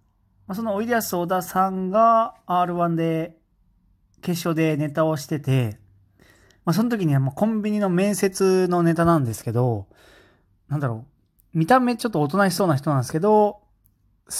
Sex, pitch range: male, 130-185 Hz